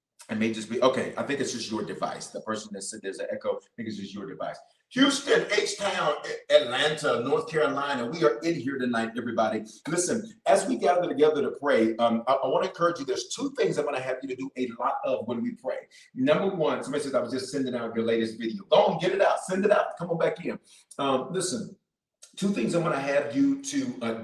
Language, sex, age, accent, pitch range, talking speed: English, male, 40-59, American, 125-205 Hz, 245 wpm